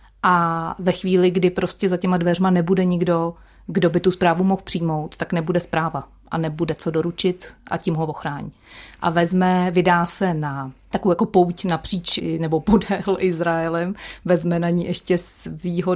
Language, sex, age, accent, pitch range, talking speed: Czech, female, 30-49, native, 160-180 Hz, 165 wpm